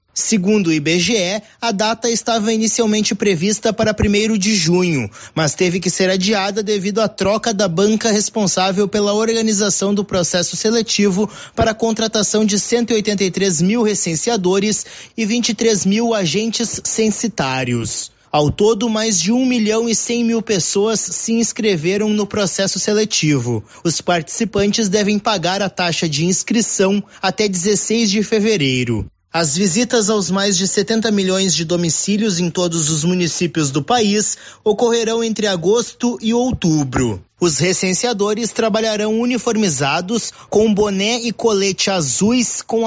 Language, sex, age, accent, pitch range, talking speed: Portuguese, male, 20-39, Brazilian, 180-220 Hz, 135 wpm